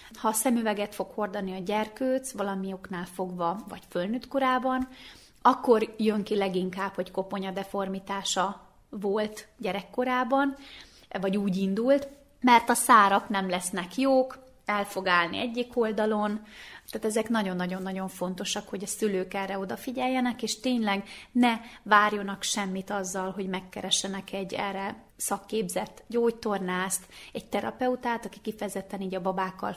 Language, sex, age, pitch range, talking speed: Hungarian, female, 30-49, 195-235 Hz, 125 wpm